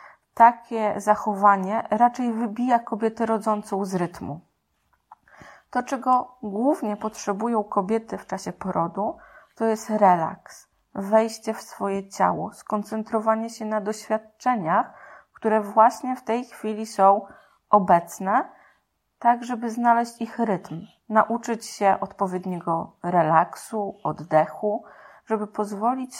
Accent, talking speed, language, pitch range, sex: native, 105 wpm, Polish, 200-240 Hz, female